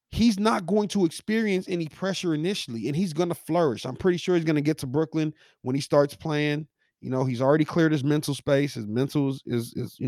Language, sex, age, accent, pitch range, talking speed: English, male, 30-49, American, 150-205 Hz, 240 wpm